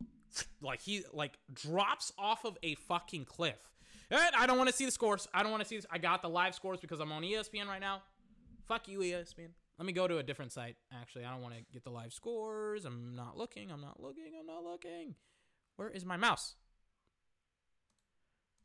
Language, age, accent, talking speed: English, 20-39, American, 220 wpm